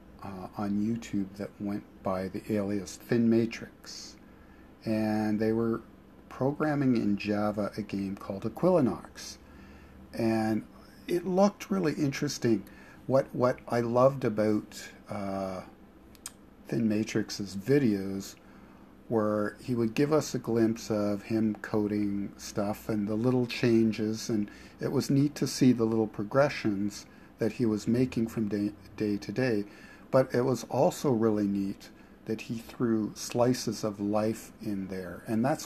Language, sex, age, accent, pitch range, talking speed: English, male, 50-69, American, 100-120 Hz, 140 wpm